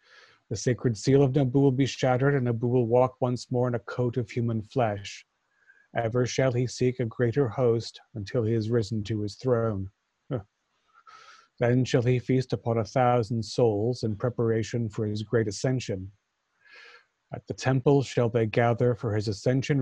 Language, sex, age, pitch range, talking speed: English, male, 40-59, 110-125 Hz, 175 wpm